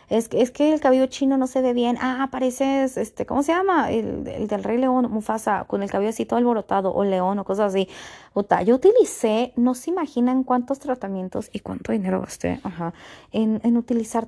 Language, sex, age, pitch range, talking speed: Spanish, female, 20-39, 195-255 Hz, 205 wpm